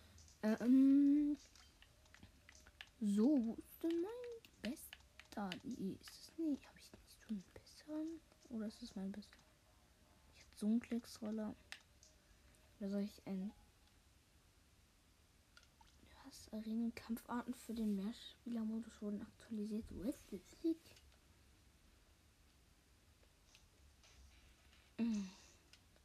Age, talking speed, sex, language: 20-39, 100 wpm, female, German